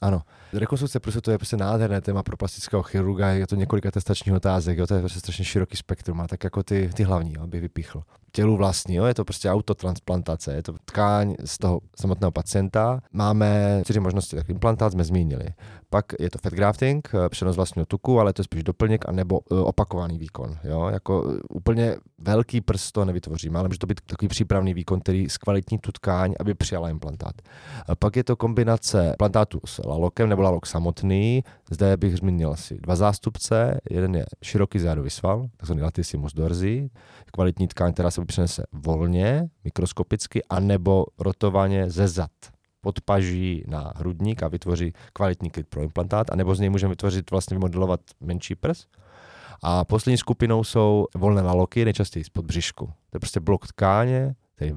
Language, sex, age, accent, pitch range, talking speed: Czech, male, 20-39, native, 90-105 Hz, 175 wpm